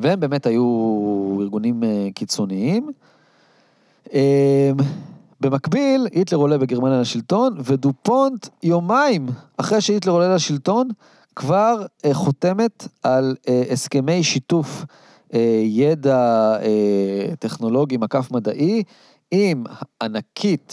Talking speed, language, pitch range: 80 wpm, Hebrew, 120-180 Hz